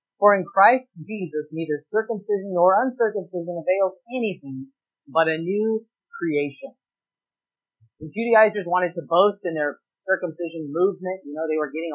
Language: English